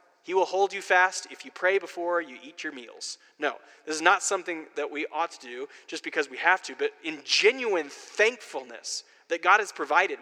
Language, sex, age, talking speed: English, male, 30-49, 210 wpm